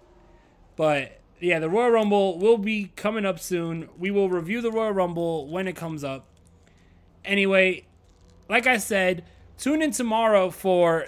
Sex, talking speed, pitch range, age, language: male, 150 wpm, 160-200 Hz, 20-39, English